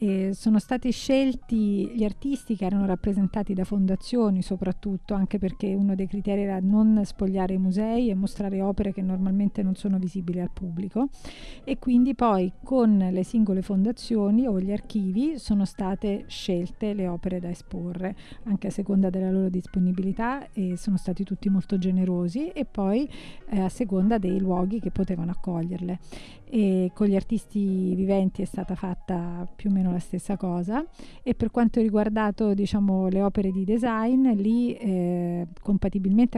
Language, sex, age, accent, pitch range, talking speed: Italian, female, 40-59, native, 185-215 Hz, 155 wpm